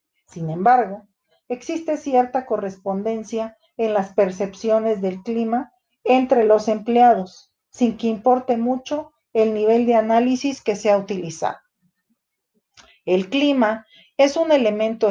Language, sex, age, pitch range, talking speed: Spanish, female, 40-59, 205-255 Hz, 120 wpm